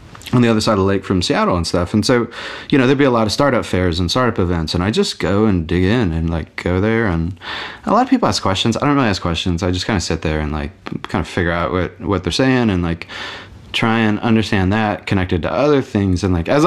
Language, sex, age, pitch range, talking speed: English, male, 30-49, 85-110 Hz, 275 wpm